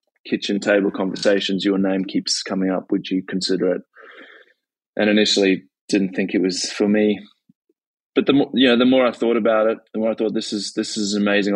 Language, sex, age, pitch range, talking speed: English, male, 20-39, 95-105 Hz, 215 wpm